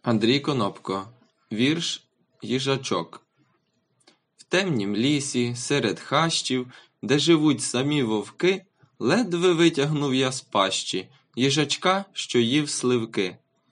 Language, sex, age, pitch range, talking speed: Ukrainian, male, 20-39, 115-155 Hz, 95 wpm